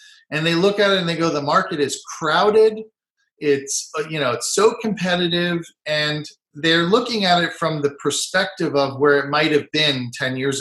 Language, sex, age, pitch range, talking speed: English, male, 40-59, 135-180 Hz, 190 wpm